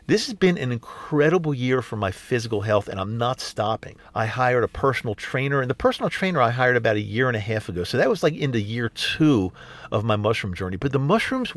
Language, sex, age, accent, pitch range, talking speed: English, male, 50-69, American, 110-150 Hz, 240 wpm